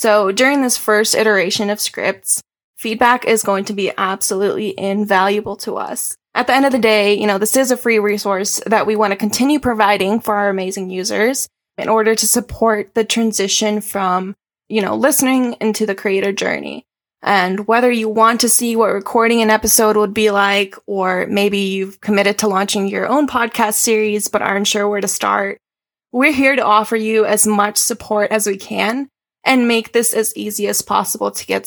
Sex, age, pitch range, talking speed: female, 10-29, 200-225 Hz, 195 wpm